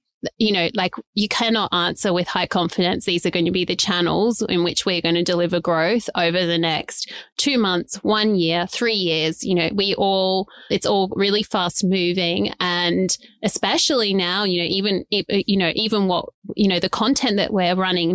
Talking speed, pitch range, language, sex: 190 wpm, 175-205 Hz, English, female